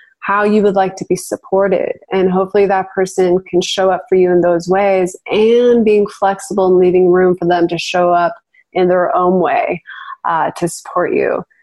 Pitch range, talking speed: 180-225 Hz, 195 wpm